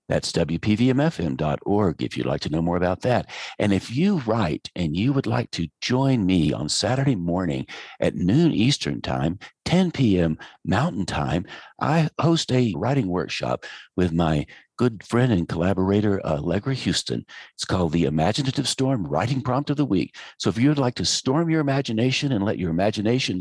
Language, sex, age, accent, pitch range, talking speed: English, male, 60-79, American, 90-135 Hz, 175 wpm